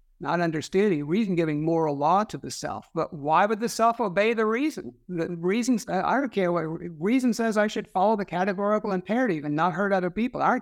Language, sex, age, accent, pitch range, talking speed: English, male, 60-79, American, 160-215 Hz, 205 wpm